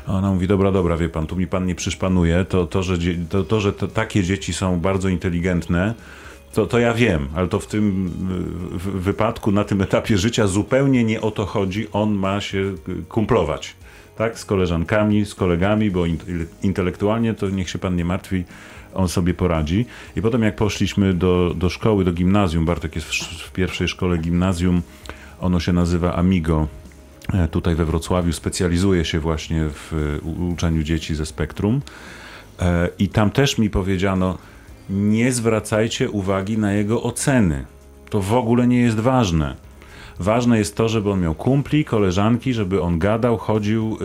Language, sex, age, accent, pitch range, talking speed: Polish, male, 40-59, native, 90-110 Hz, 165 wpm